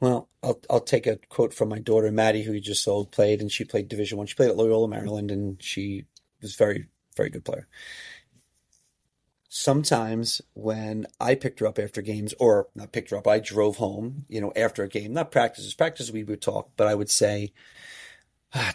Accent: American